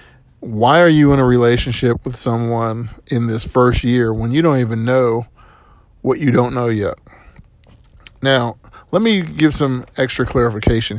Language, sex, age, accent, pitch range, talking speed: English, male, 40-59, American, 115-145 Hz, 160 wpm